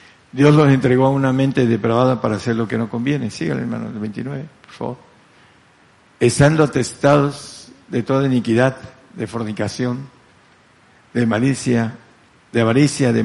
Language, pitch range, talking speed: Spanish, 115-130 Hz, 135 wpm